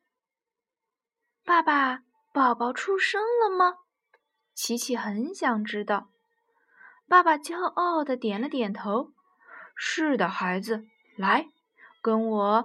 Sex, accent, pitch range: female, native, 230-360 Hz